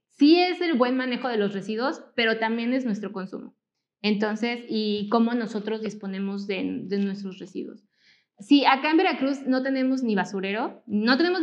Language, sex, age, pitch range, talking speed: Spanish, female, 20-39, 205-245 Hz, 170 wpm